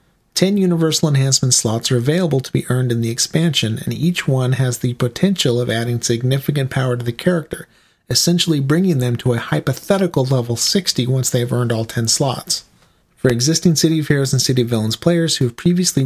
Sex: male